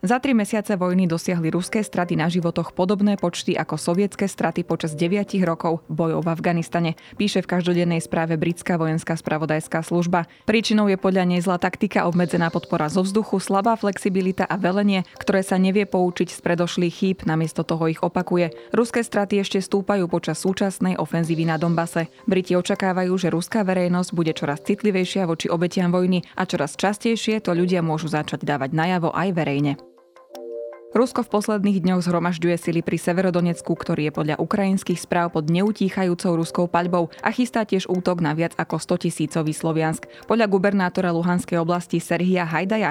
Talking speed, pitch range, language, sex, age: 160 wpm, 165-195 Hz, Slovak, female, 20-39